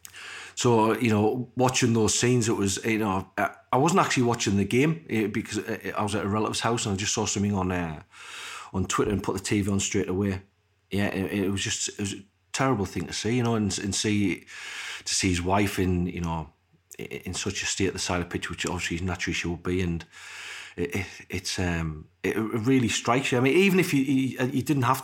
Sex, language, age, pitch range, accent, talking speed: male, English, 40-59, 95-115 Hz, British, 225 wpm